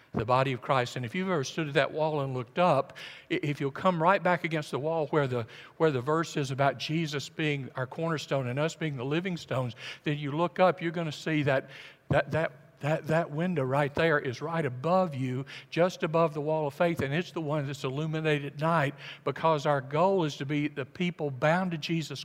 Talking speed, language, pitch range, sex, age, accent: 225 wpm, English, 140-175 Hz, male, 60-79, American